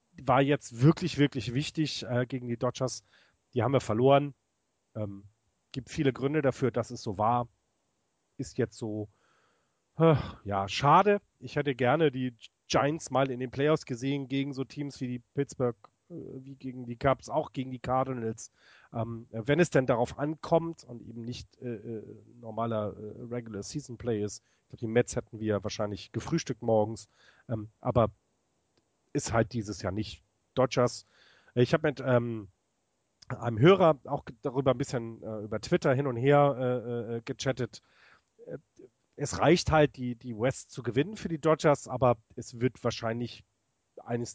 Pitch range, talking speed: 110-135 Hz, 165 wpm